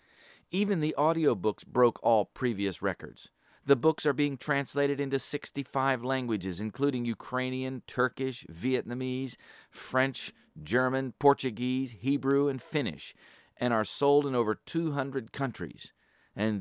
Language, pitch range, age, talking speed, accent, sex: English, 110-145 Hz, 50-69, 120 wpm, American, male